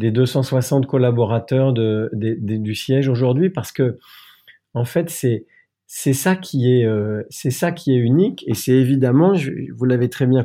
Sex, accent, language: male, French, French